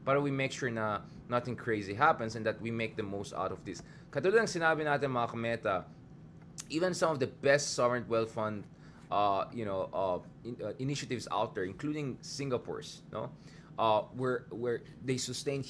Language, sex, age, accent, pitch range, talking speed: English, male, 20-39, Filipino, 110-160 Hz, 170 wpm